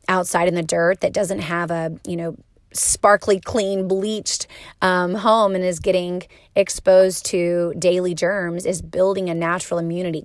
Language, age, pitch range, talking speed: English, 30-49, 170-195 Hz, 160 wpm